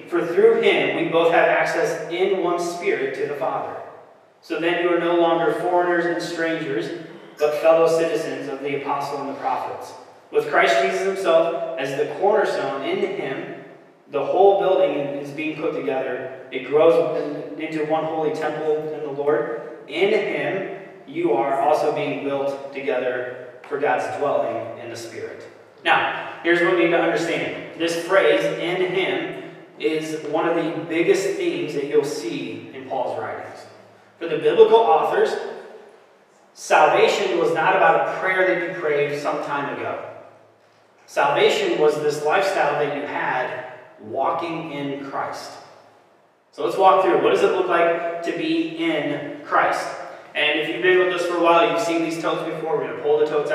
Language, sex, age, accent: English, male, 30-49, American